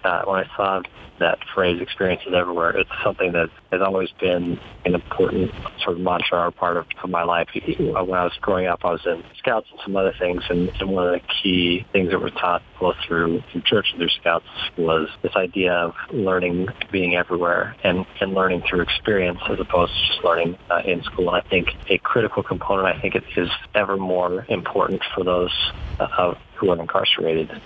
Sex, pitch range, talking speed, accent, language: male, 85-95 Hz, 205 wpm, American, English